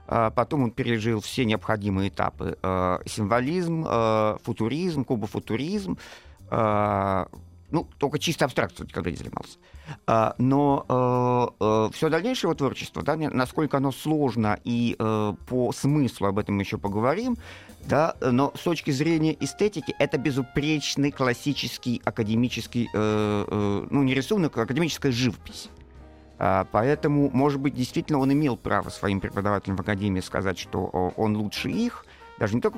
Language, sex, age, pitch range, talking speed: Russian, male, 50-69, 105-145 Hz, 120 wpm